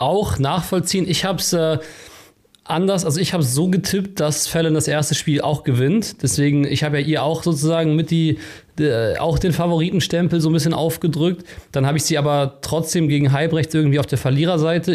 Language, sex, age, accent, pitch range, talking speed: German, male, 30-49, German, 135-170 Hz, 180 wpm